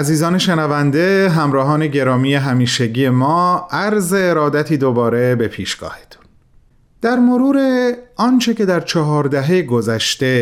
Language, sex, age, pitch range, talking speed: Persian, male, 30-49, 120-170 Hz, 105 wpm